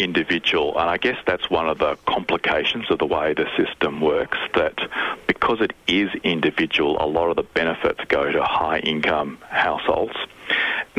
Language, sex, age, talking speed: English, male, 40-59, 170 wpm